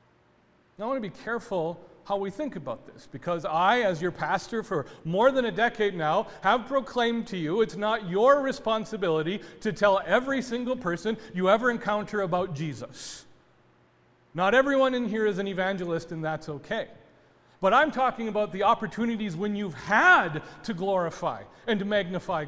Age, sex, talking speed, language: 40-59, male, 165 wpm, English